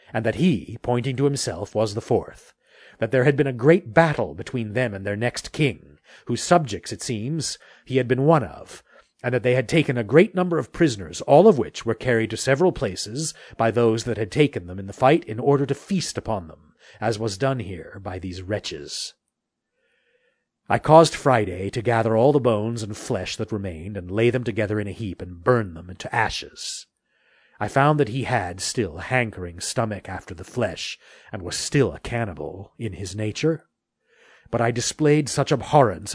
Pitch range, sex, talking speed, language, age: 100-135 Hz, male, 200 wpm, English, 40-59